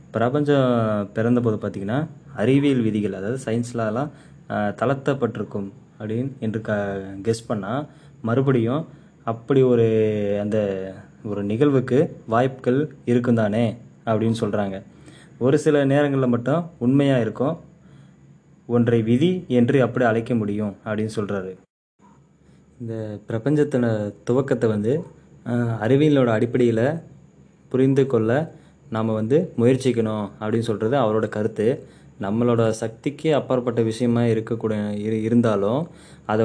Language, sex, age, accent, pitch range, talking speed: Tamil, male, 20-39, native, 110-135 Hz, 95 wpm